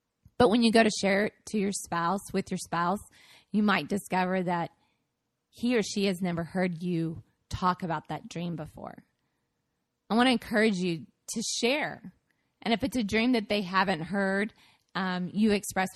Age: 20-39